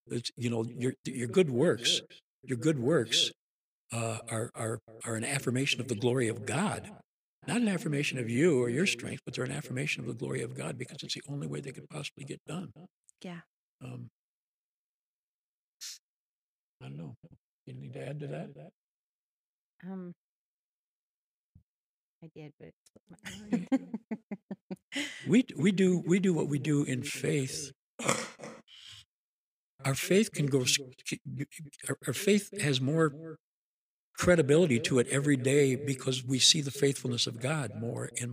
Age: 60-79